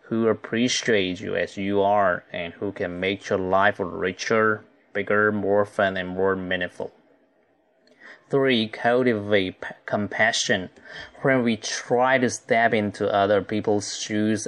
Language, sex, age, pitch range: Chinese, male, 20-39, 95-110 Hz